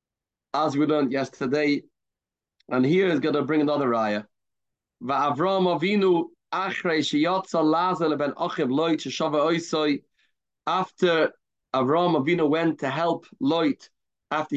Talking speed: 80 wpm